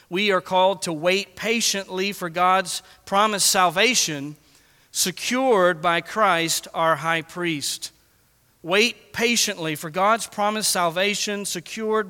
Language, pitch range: English, 175-215 Hz